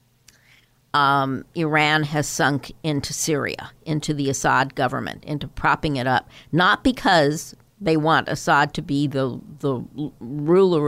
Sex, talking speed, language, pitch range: female, 130 wpm, English, 135-170 Hz